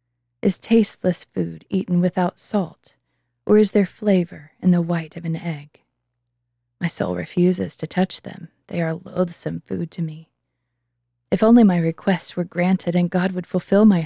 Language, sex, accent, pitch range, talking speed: English, female, American, 160-195 Hz, 165 wpm